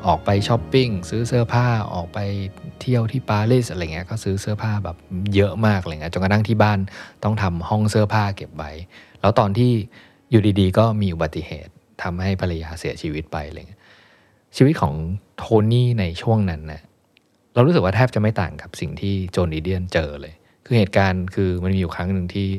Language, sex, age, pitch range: Thai, male, 20-39, 90-110 Hz